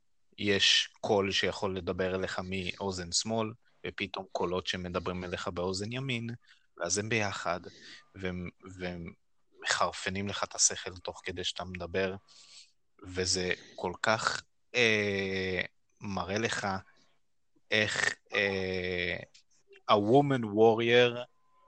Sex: male